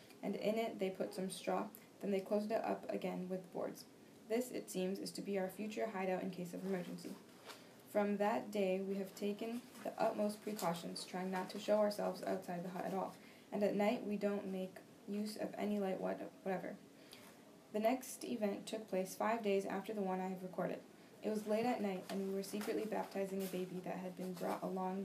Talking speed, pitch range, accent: 210 wpm, 190-210 Hz, American